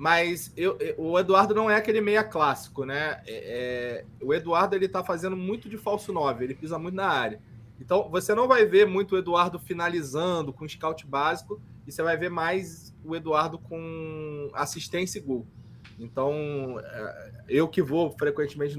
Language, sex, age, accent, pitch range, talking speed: Portuguese, male, 20-39, Brazilian, 140-195 Hz, 175 wpm